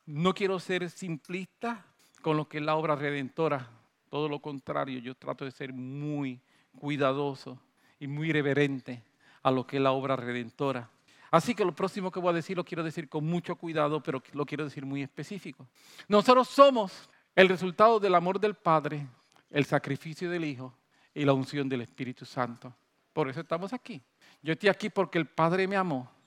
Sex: male